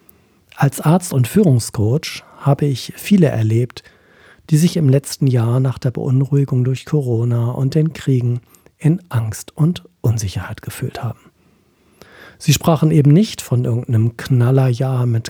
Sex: male